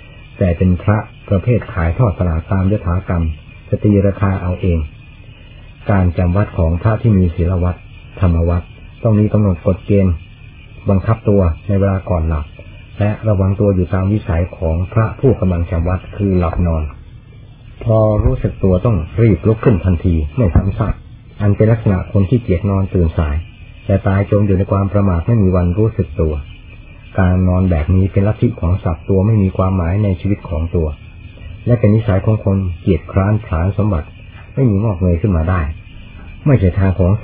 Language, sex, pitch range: Thai, male, 90-105 Hz